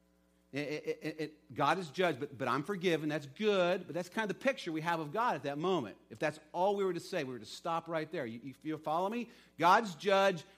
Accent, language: American, English